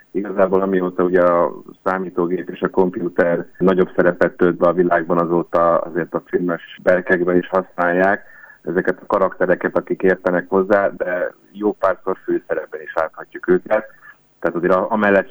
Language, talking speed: Hungarian, 145 wpm